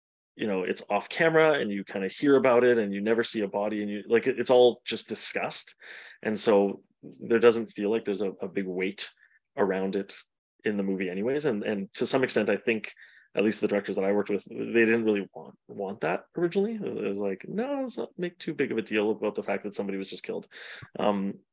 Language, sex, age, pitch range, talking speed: English, male, 20-39, 100-125 Hz, 235 wpm